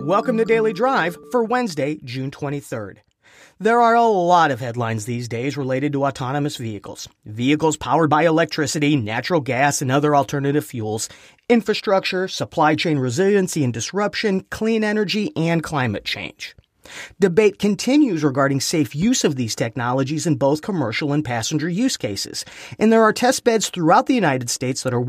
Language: English